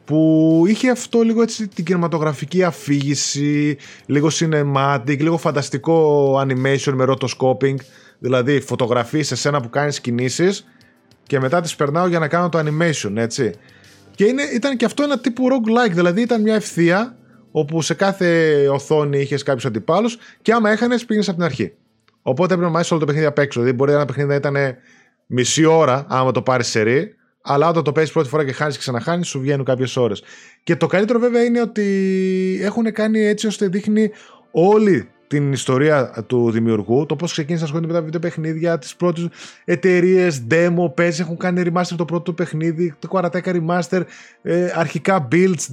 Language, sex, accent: Greek, male, native